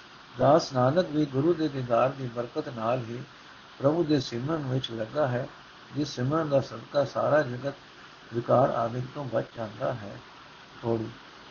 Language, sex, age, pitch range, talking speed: Punjabi, male, 60-79, 130-170 Hz, 150 wpm